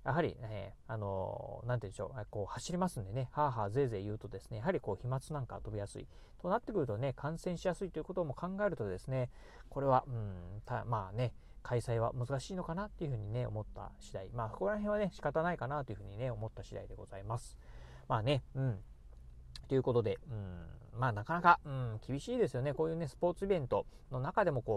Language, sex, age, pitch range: Japanese, male, 40-59, 110-160 Hz